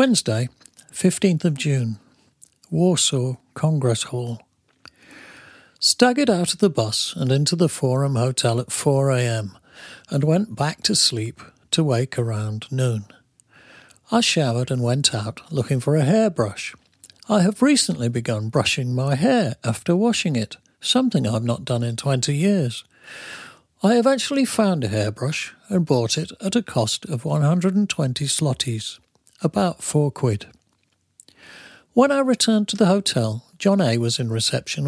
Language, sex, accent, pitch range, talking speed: English, male, British, 120-180 Hz, 140 wpm